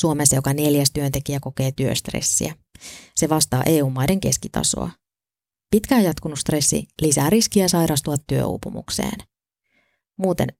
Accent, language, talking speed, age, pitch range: native, Finnish, 100 wpm, 20-39, 140-175 Hz